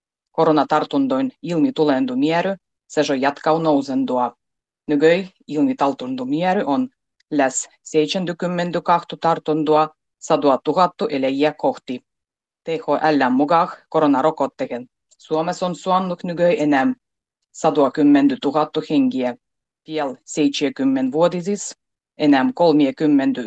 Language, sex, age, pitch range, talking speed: Finnish, female, 30-49, 140-180 Hz, 85 wpm